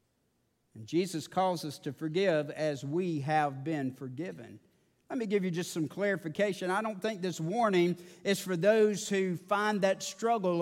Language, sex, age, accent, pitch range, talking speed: English, male, 50-69, American, 185-235 Hz, 170 wpm